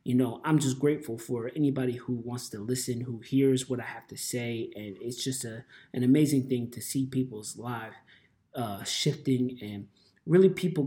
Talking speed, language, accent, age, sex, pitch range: 190 wpm, English, American, 20-39, male, 125-145 Hz